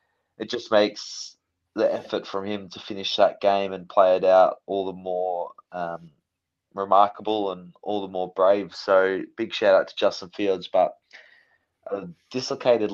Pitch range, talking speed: 85-105 Hz, 160 wpm